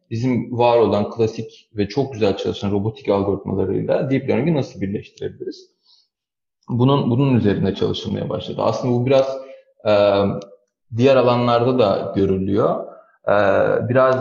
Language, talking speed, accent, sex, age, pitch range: Turkish, 125 wpm, native, male, 30-49, 110-140 Hz